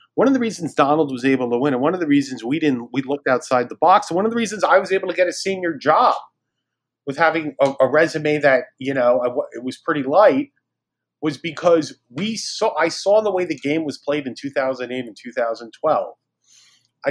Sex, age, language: male, 30-49, English